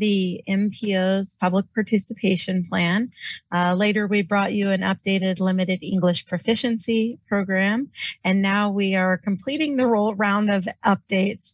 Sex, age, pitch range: female, 30-49, 185-210 Hz